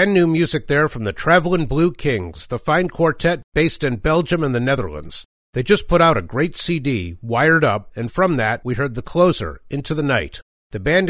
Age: 50-69